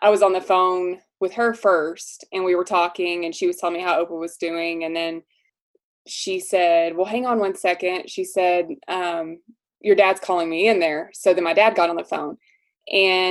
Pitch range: 175-220 Hz